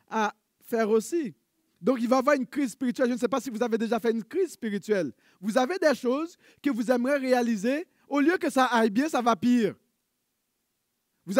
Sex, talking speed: male, 215 wpm